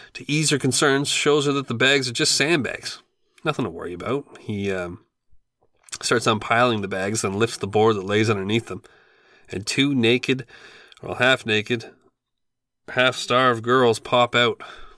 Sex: male